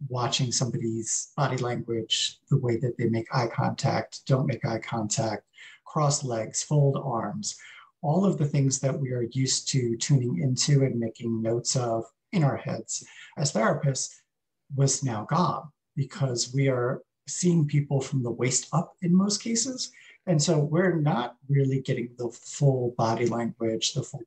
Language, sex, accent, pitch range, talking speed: English, male, American, 120-155 Hz, 165 wpm